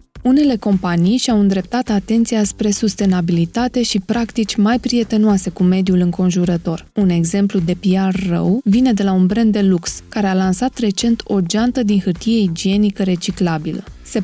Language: Romanian